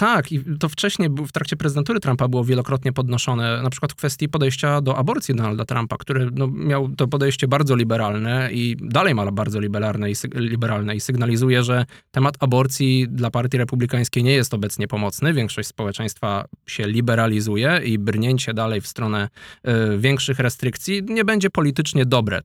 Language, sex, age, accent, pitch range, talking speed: Polish, male, 20-39, native, 110-135 Hz, 160 wpm